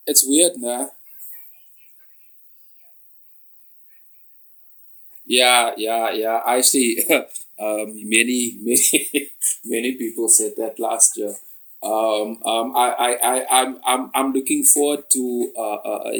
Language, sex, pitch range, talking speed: English, male, 110-140 Hz, 105 wpm